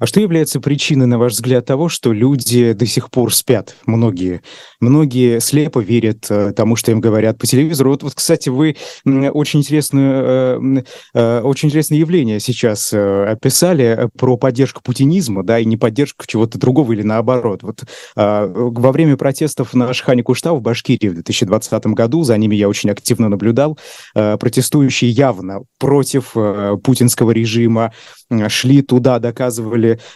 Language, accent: Russian, native